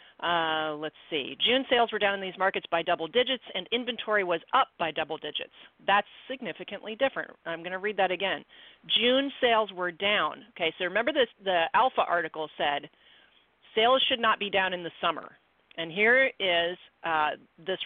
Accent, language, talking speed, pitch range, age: American, English, 180 wpm, 170-220 Hz, 40-59